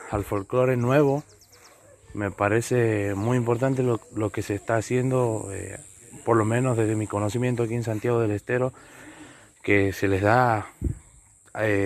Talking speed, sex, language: 150 wpm, male, Spanish